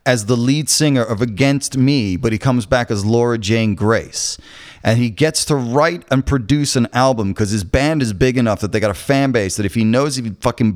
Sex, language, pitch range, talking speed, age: male, English, 95-125 Hz, 235 wpm, 30-49